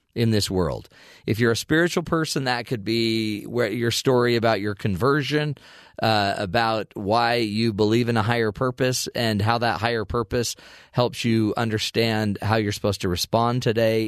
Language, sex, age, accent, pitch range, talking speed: English, male, 40-59, American, 105-125 Hz, 165 wpm